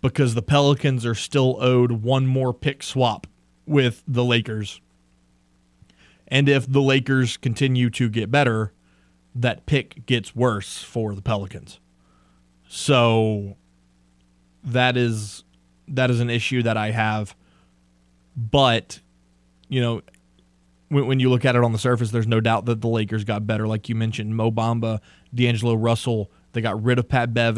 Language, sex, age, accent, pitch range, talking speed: English, male, 20-39, American, 90-130 Hz, 155 wpm